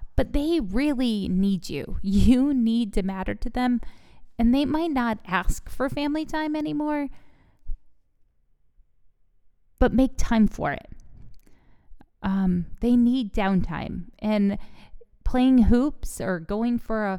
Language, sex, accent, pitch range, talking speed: English, female, American, 195-245 Hz, 125 wpm